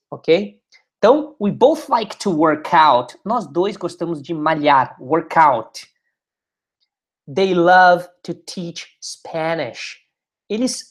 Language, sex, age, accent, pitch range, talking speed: English, male, 20-39, Brazilian, 155-220 Hz, 115 wpm